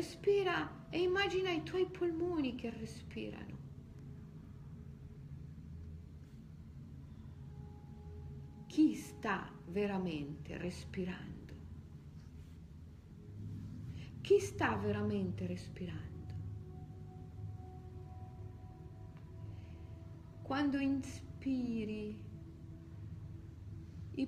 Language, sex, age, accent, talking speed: Italian, female, 50-69, native, 45 wpm